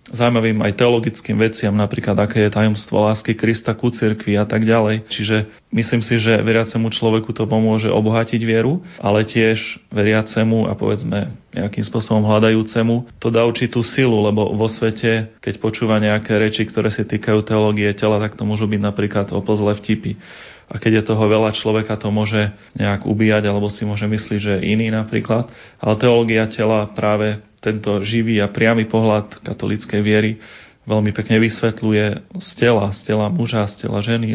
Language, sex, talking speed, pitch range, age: Slovak, male, 170 wpm, 105-115 Hz, 30-49